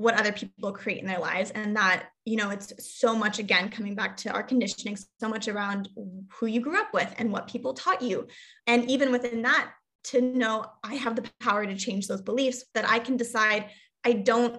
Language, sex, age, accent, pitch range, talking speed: English, female, 20-39, American, 205-250 Hz, 220 wpm